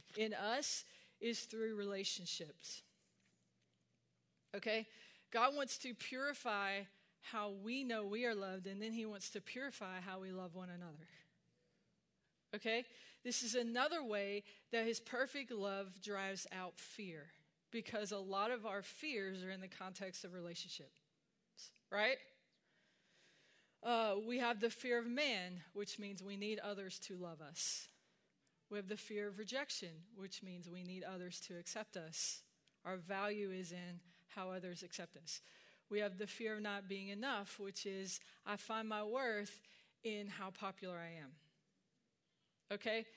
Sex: female